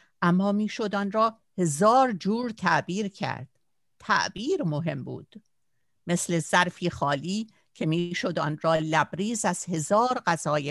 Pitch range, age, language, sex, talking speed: 170-220 Hz, 50-69, Persian, female, 130 wpm